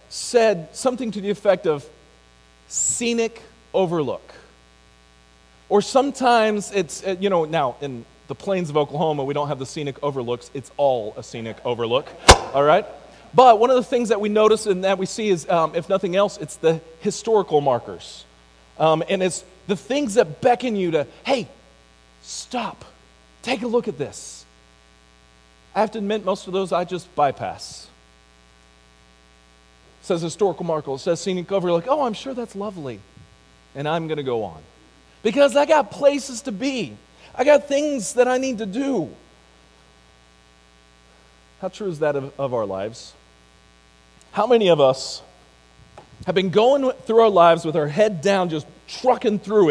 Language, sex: English, male